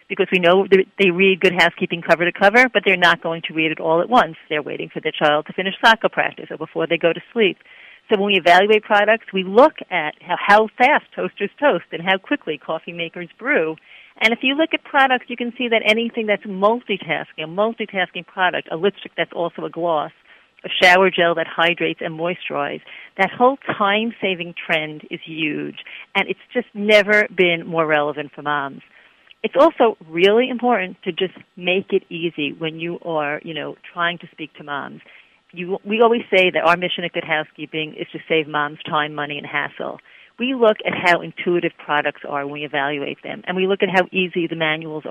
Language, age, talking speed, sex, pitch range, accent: English, 50-69, 200 wpm, female, 160-205 Hz, American